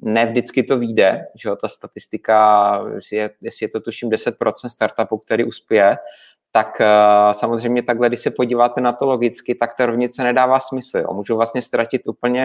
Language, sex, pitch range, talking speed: Czech, male, 110-125 Hz, 175 wpm